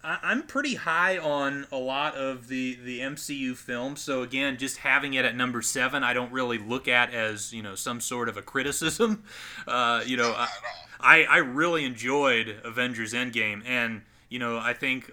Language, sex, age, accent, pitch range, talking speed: English, male, 30-49, American, 115-130 Hz, 185 wpm